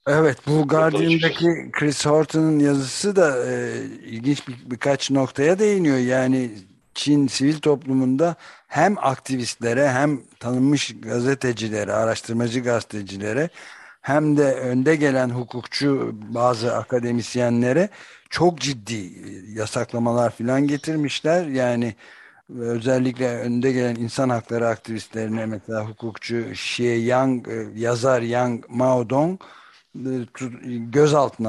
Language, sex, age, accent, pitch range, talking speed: Turkish, male, 60-79, native, 115-140 Hz, 100 wpm